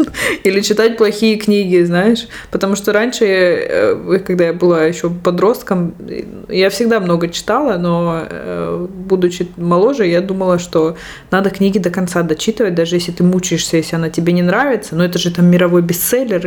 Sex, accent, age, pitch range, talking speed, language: female, native, 20-39, 175-215 Hz, 155 wpm, Russian